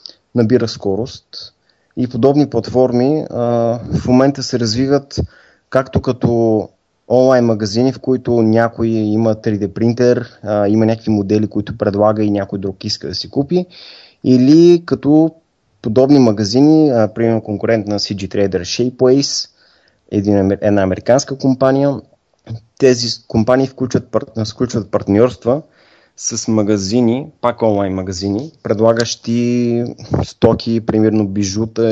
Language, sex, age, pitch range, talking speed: Bulgarian, male, 20-39, 105-125 Hz, 115 wpm